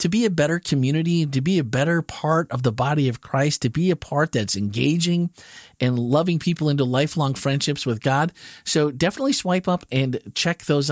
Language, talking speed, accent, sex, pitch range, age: English, 200 wpm, American, male, 135-190 Hz, 40-59